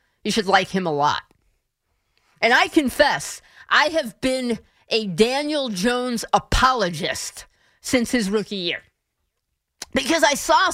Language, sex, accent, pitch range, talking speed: English, female, American, 200-265 Hz, 130 wpm